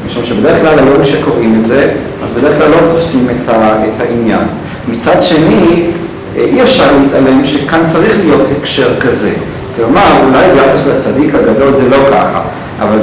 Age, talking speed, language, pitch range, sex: 50-69, 155 wpm, Hebrew, 120-145 Hz, male